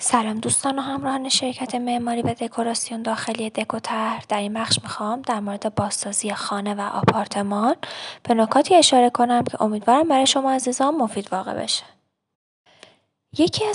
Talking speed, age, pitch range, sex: 145 wpm, 20-39, 210-270 Hz, female